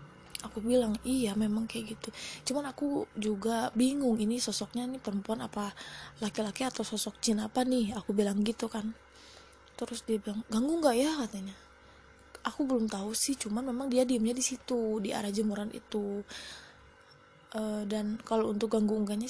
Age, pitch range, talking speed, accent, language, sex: 20-39, 210-245 Hz, 160 wpm, native, Indonesian, female